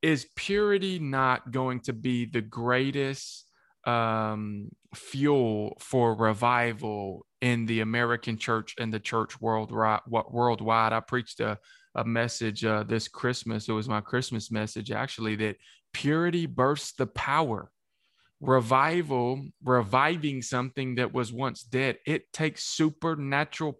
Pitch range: 115-140 Hz